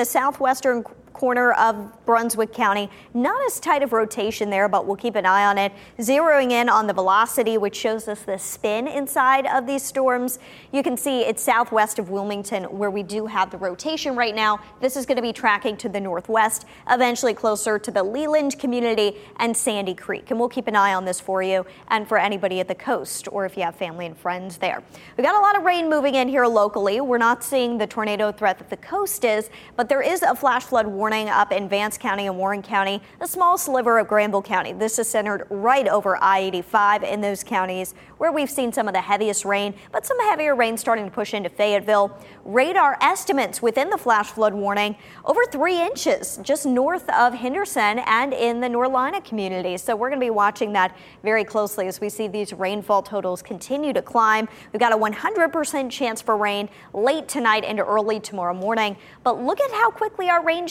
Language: English